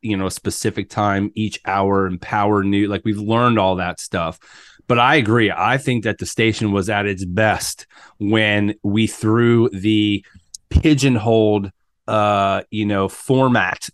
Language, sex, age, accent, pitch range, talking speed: English, male, 30-49, American, 100-115 Hz, 160 wpm